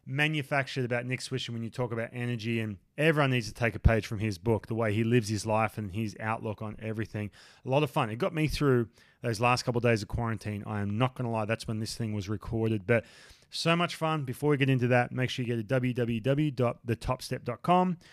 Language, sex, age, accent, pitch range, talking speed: English, male, 20-39, Australian, 115-140 Hz, 240 wpm